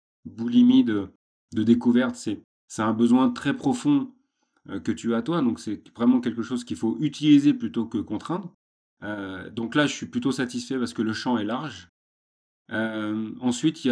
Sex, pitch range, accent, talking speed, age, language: male, 105-140 Hz, French, 180 wpm, 30-49, French